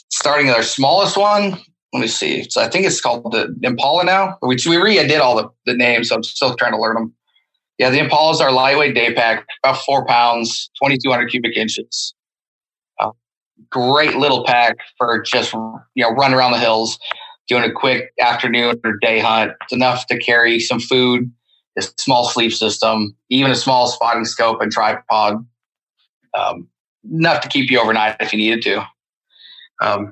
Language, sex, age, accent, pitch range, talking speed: English, male, 30-49, American, 115-130 Hz, 180 wpm